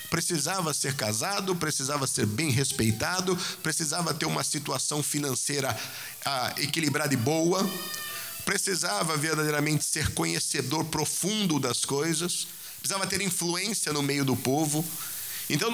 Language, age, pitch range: Portuguese, 50-69, 135-180 Hz